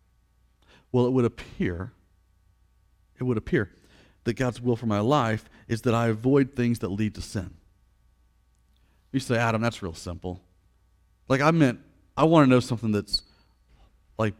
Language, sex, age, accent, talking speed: English, male, 40-59, American, 160 wpm